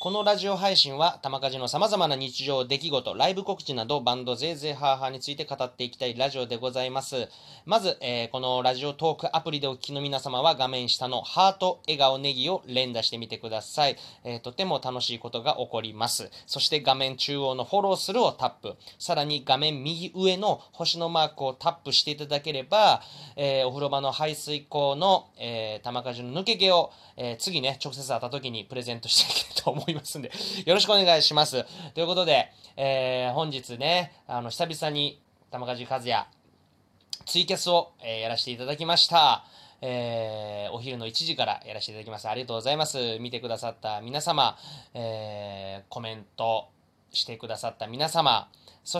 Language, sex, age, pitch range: Japanese, male, 20-39, 120-160 Hz